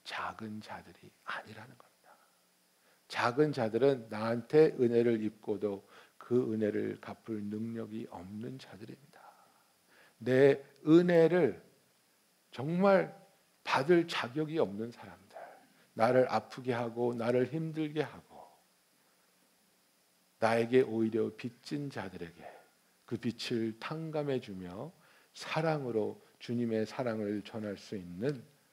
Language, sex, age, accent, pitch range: Korean, male, 60-79, native, 105-140 Hz